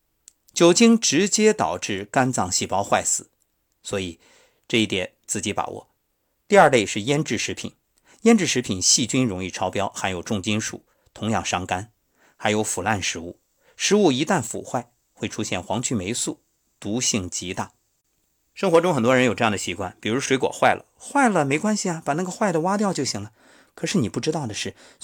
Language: Chinese